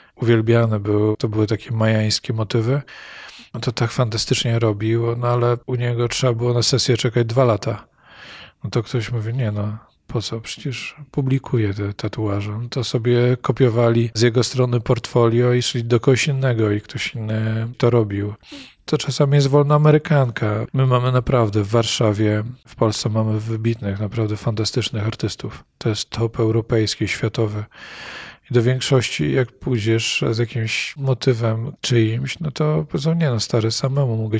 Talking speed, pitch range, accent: 160 wpm, 110-130 Hz, native